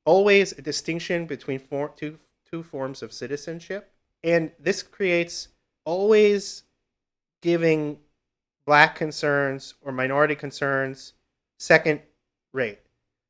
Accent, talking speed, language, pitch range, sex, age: American, 100 wpm, English, 130-170 Hz, male, 30-49